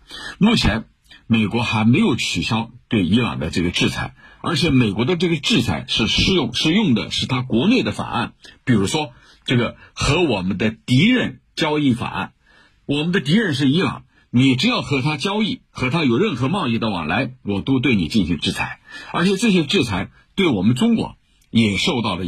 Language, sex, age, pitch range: Chinese, male, 50-69, 105-145 Hz